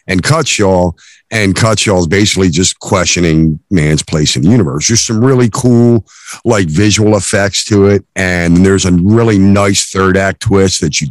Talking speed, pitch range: 165 wpm, 85-110 Hz